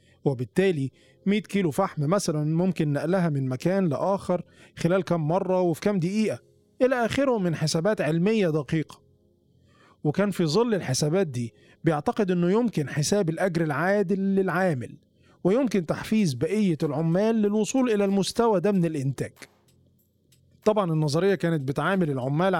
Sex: male